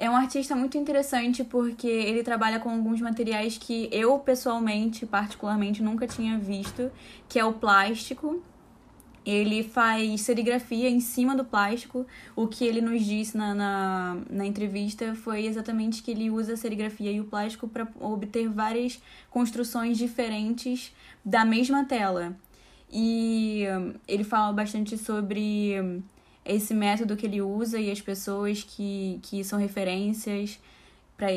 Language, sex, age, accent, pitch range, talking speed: Portuguese, female, 10-29, Brazilian, 200-230 Hz, 140 wpm